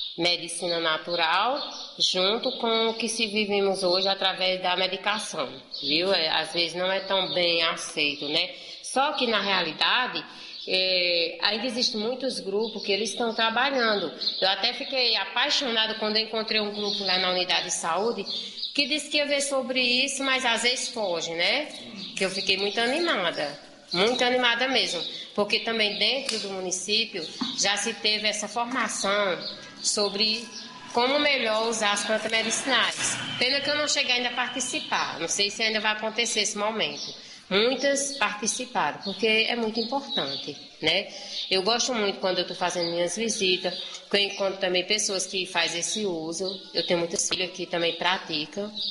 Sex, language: female, Portuguese